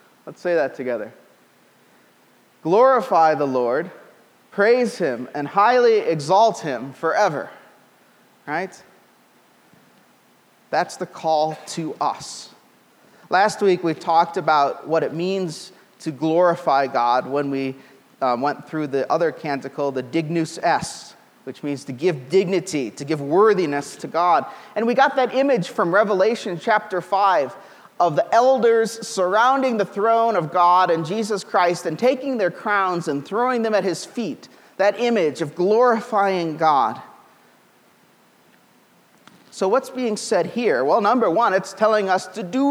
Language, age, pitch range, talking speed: English, 30-49, 155-220 Hz, 140 wpm